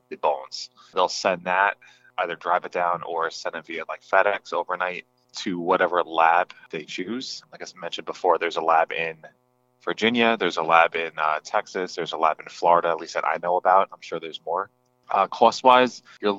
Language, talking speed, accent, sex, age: English, 200 wpm, American, male, 20-39